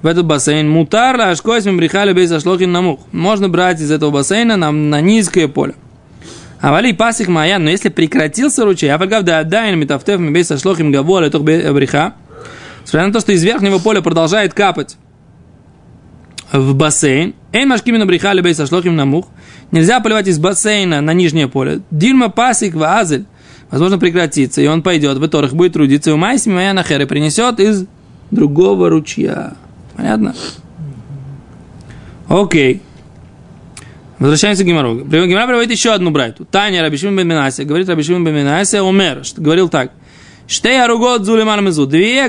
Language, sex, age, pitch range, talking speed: Russian, male, 20-39, 150-200 Hz, 150 wpm